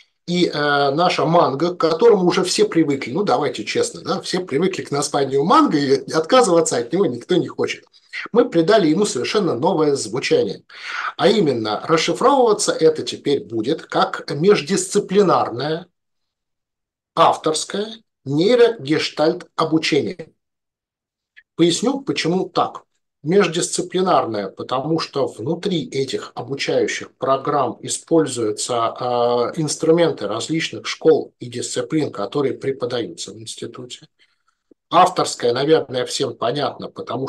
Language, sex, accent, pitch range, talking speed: Russian, male, native, 140-205 Hz, 110 wpm